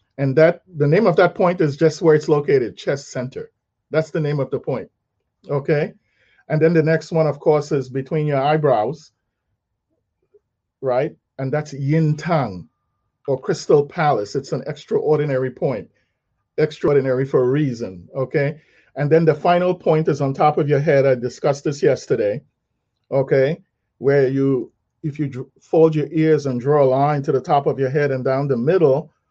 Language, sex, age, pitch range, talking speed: English, male, 40-59, 135-160 Hz, 175 wpm